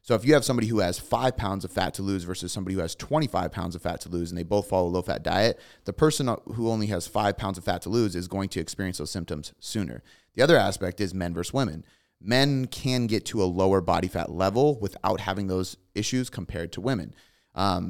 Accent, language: American, English